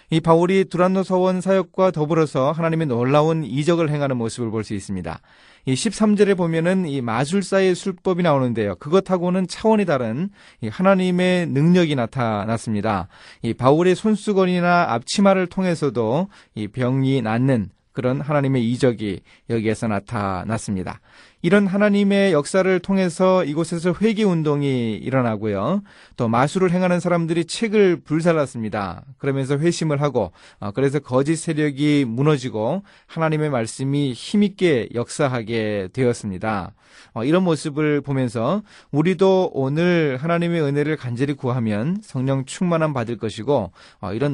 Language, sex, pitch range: Korean, male, 120-180 Hz